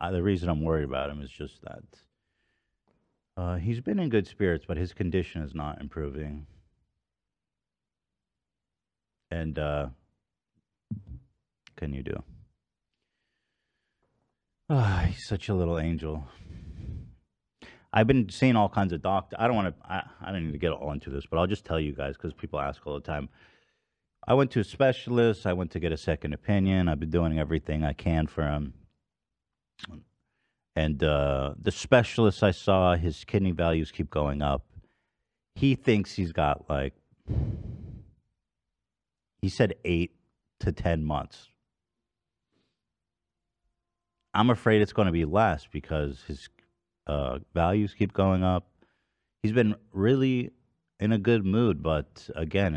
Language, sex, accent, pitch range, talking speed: English, male, American, 75-105 Hz, 150 wpm